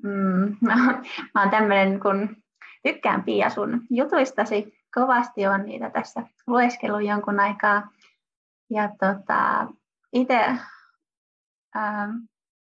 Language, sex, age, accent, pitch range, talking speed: Finnish, female, 20-39, native, 200-245 Hz, 100 wpm